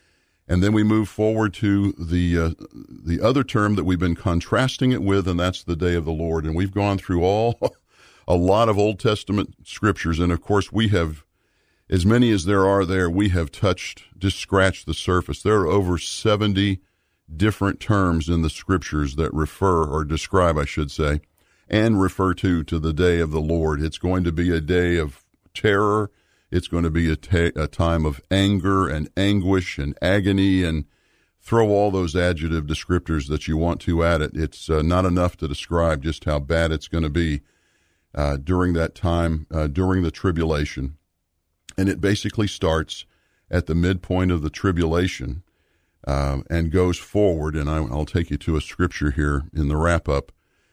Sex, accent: male, American